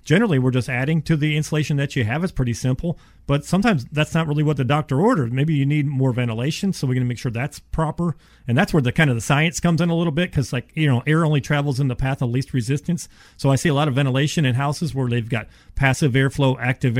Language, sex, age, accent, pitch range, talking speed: English, male, 40-59, American, 130-160 Hz, 270 wpm